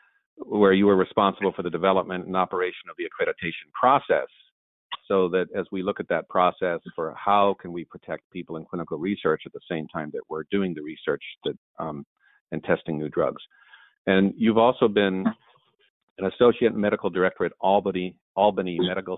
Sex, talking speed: male, 170 wpm